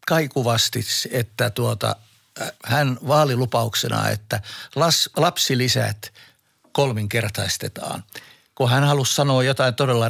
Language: Finnish